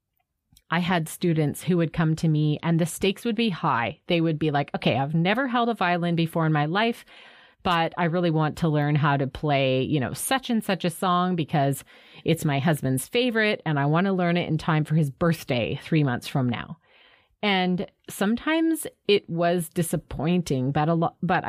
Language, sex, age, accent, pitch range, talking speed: English, female, 30-49, American, 155-195 Hz, 205 wpm